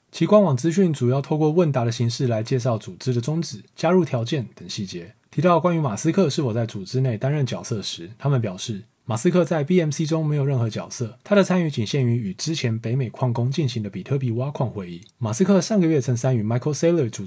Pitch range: 115-165 Hz